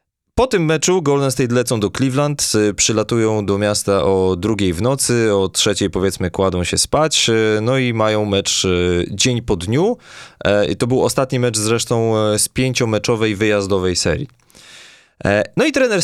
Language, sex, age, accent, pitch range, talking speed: Polish, male, 20-39, native, 100-130 Hz, 155 wpm